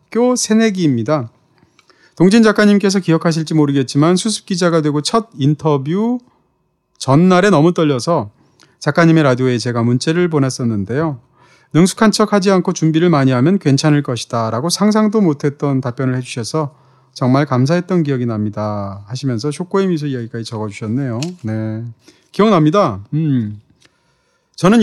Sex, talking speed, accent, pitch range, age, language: male, 105 wpm, Korean, 135-185 Hz, 30-49, English